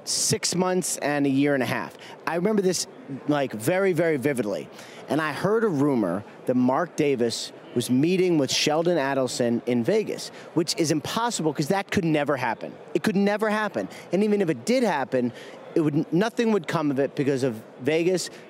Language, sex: English, male